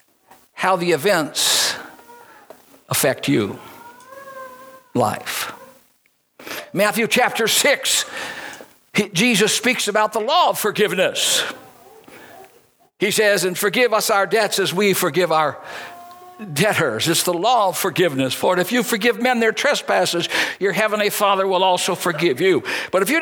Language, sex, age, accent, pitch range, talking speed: English, male, 60-79, American, 175-245 Hz, 130 wpm